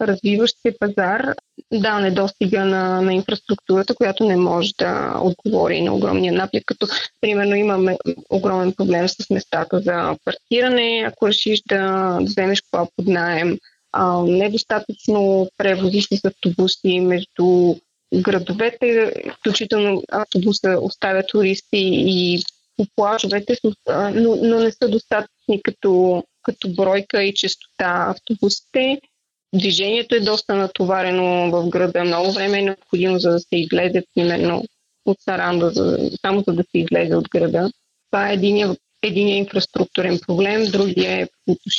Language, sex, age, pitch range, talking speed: Bulgarian, female, 20-39, 185-215 Hz, 125 wpm